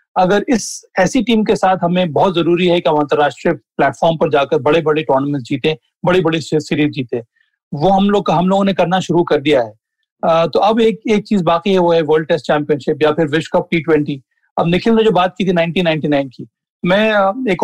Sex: male